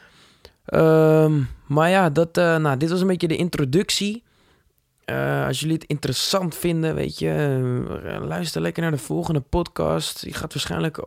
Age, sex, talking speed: 20-39, male, 155 wpm